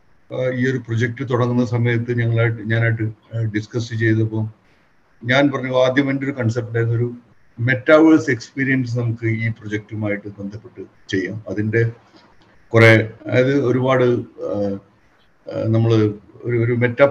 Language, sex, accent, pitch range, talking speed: Malayalam, male, native, 110-130 Hz, 105 wpm